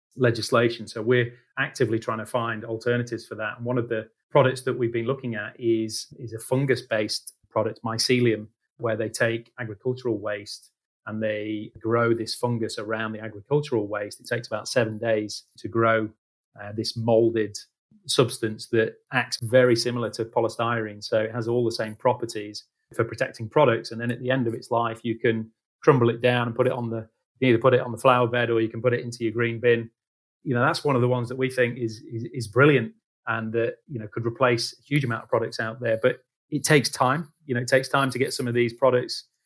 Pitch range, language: 110-125 Hz, English